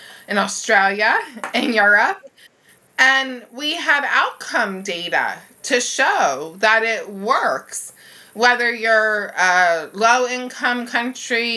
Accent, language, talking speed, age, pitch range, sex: American, English, 100 wpm, 30-49, 205-250 Hz, female